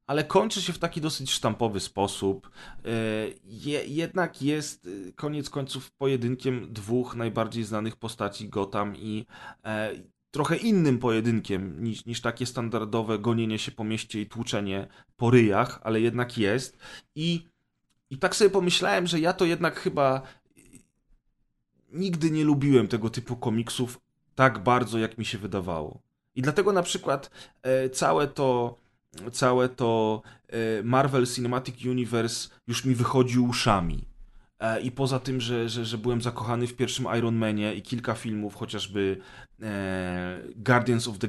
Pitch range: 110-130 Hz